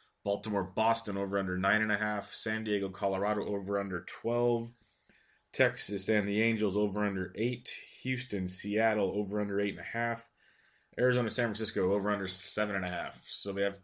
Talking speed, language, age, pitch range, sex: 140 wpm, English, 20-39, 95-110 Hz, male